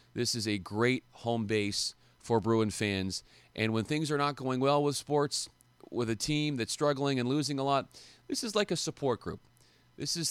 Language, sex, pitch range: English, male, 110-140 Hz